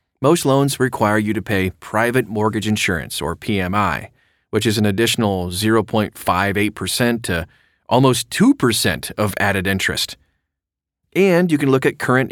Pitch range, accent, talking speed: 95-130 Hz, American, 135 wpm